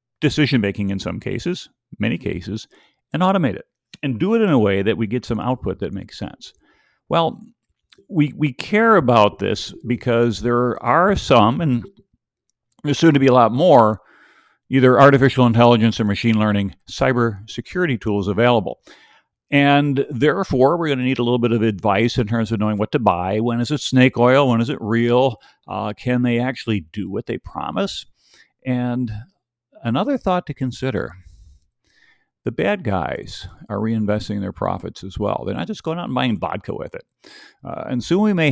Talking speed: 180 wpm